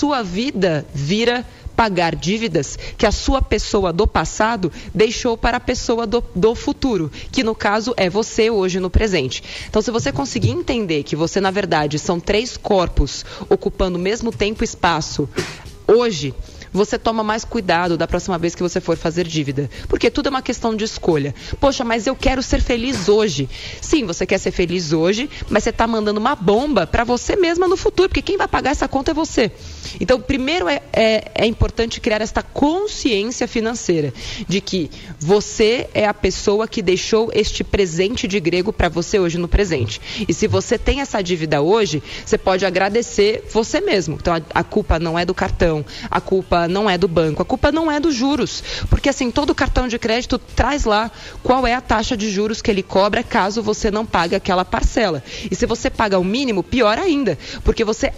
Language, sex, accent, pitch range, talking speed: Portuguese, female, Brazilian, 180-245 Hz, 195 wpm